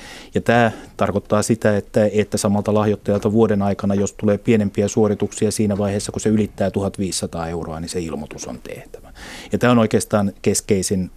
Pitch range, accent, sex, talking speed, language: 95-110 Hz, native, male, 165 wpm, Finnish